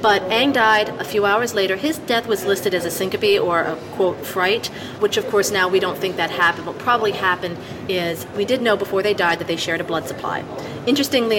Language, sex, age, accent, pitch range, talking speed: English, female, 40-59, American, 170-215 Hz, 230 wpm